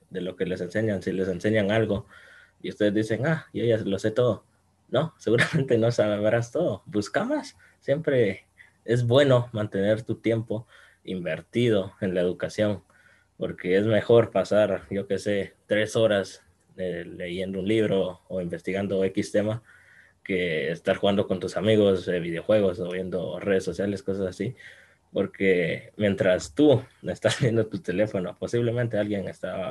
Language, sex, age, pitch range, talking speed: Spanish, male, 20-39, 95-110 Hz, 155 wpm